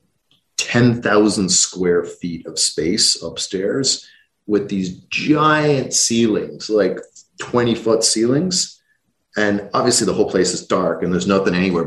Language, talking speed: English, 125 wpm